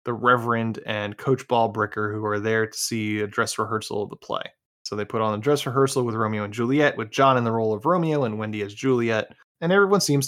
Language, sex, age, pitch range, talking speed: English, male, 20-39, 110-130 Hz, 240 wpm